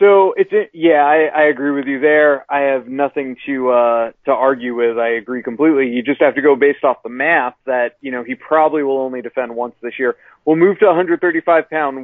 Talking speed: 220 wpm